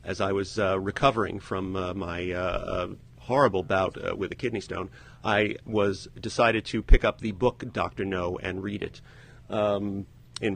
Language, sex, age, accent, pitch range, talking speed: English, male, 40-59, American, 100-125 Hz, 180 wpm